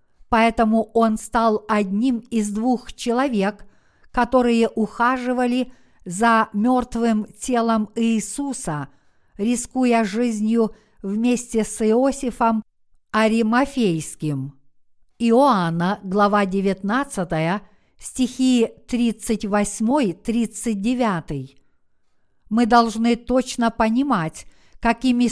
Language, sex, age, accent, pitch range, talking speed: Russian, female, 50-69, native, 210-245 Hz, 70 wpm